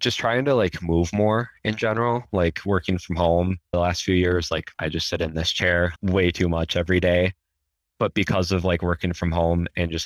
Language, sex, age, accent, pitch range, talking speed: English, male, 20-39, American, 80-90 Hz, 220 wpm